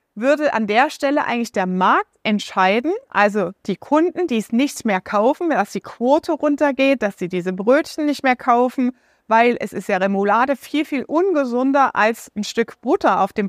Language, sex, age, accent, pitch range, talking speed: German, female, 30-49, German, 220-285 Hz, 180 wpm